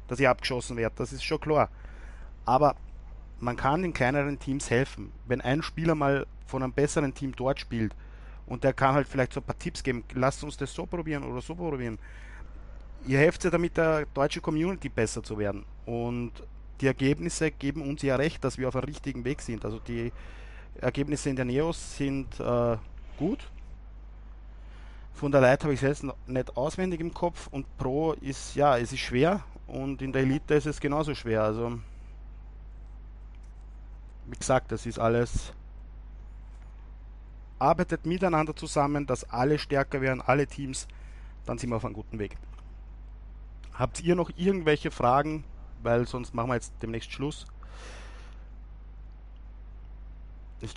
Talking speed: 165 wpm